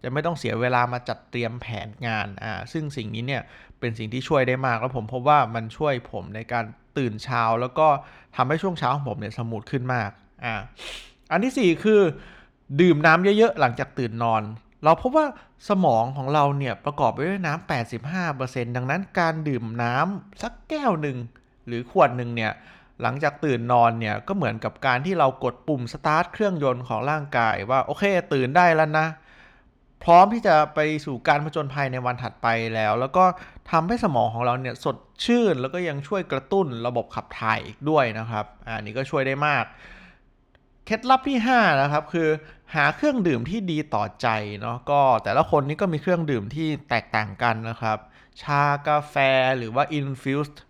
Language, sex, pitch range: Thai, male, 115-155 Hz